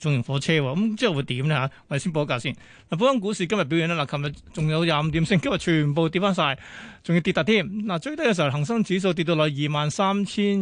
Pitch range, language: 150-190 Hz, Chinese